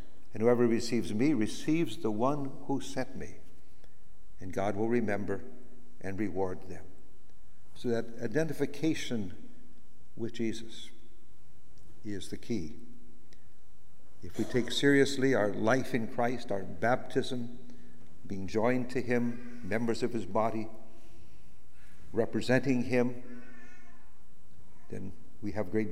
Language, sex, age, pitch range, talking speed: English, male, 60-79, 95-125 Hz, 115 wpm